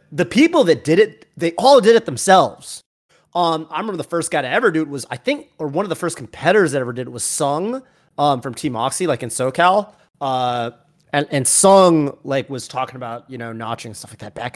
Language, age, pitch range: English, 30-49, 125-165 Hz